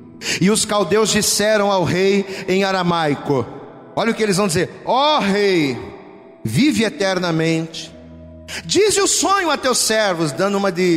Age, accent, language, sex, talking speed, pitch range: 40-59, Brazilian, Portuguese, male, 155 wpm, 170-255 Hz